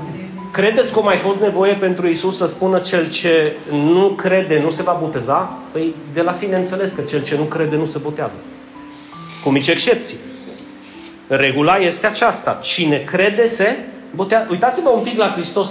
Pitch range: 160-190 Hz